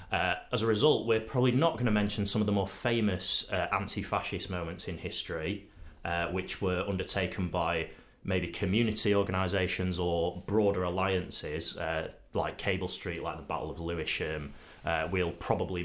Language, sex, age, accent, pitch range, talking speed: English, male, 30-49, British, 80-95 Hz, 165 wpm